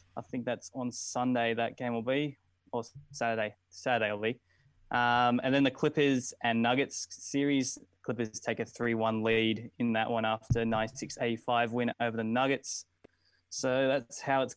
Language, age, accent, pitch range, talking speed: English, 20-39, Australian, 115-135 Hz, 170 wpm